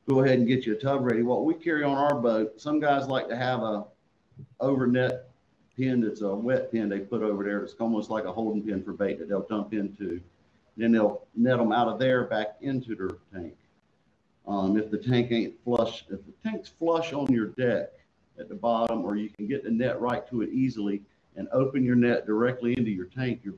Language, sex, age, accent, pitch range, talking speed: English, male, 50-69, American, 105-125 Hz, 225 wpm